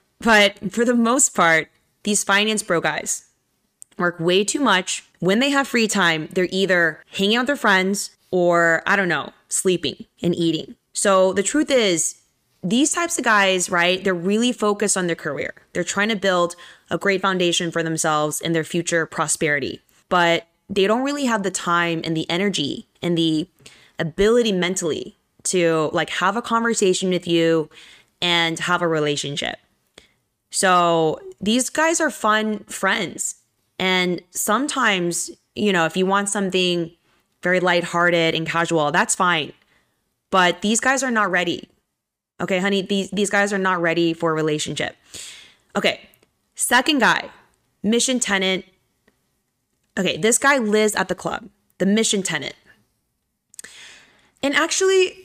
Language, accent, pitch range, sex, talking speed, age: English, American, 170-210 Hz, female, 150 wpm, 20-39